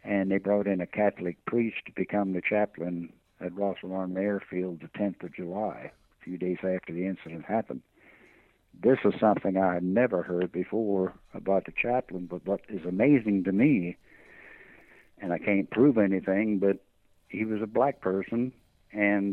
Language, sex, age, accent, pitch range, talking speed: English, male, 60-79, American, 95-110 Hz, 170 wpm